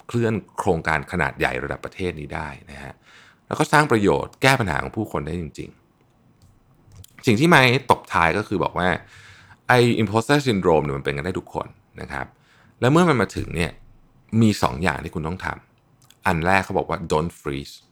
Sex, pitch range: male, 80-115 Hz